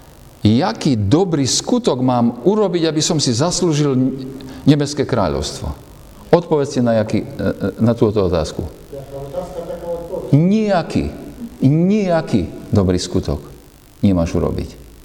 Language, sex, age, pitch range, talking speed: Slovak, male, 50-69, 95-140 Hz, 90 wpm